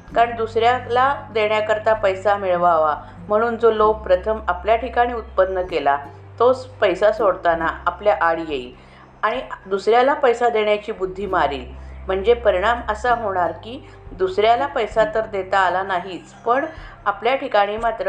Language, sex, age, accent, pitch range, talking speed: Marathi, female, 50-69, native, 175-230 Hz, 130 wpm